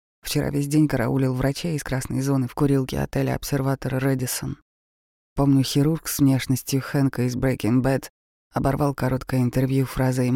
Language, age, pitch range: Russian, 20-39, 120-145 Hz